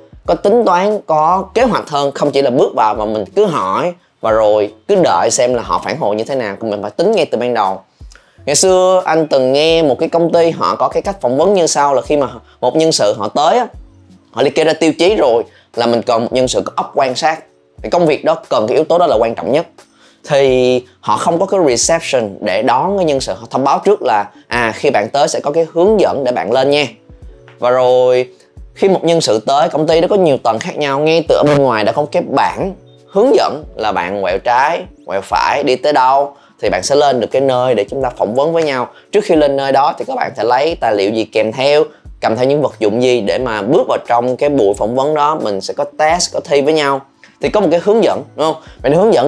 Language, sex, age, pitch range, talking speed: Vietnamese, male, 20-39, 115-160 Hz, 265 wpm